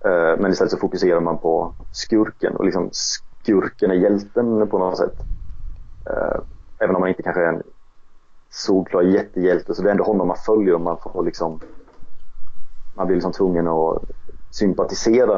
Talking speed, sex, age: 165 wpm, male, 30-49